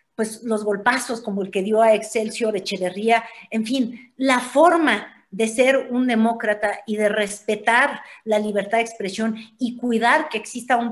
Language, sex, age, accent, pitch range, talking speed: Spanish, female, 50-69, Mexican, 220-280 Hz, 170 wpm